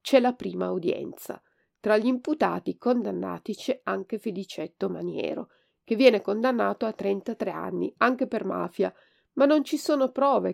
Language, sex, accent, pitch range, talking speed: Italian, female, native, 195-265 Hz, 150 wpm